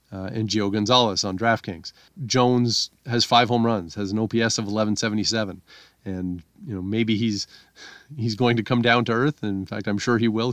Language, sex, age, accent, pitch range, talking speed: English, male, 40-59, American, 110-150 Hz, 200 wpm